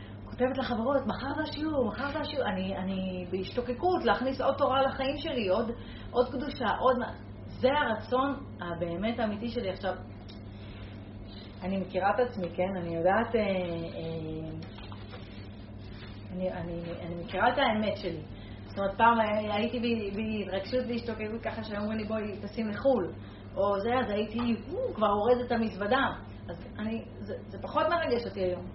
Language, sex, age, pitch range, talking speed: Hebrew, female, 30-49, 175-255 Hz, 150 wpm